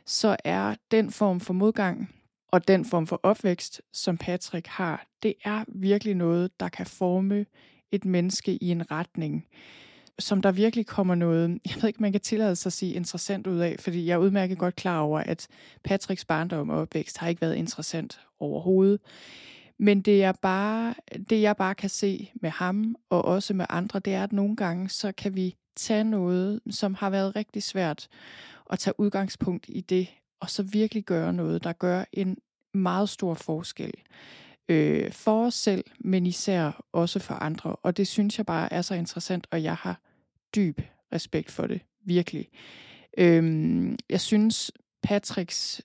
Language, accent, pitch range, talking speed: Danish, native, 175-205 Hz, 175 wpm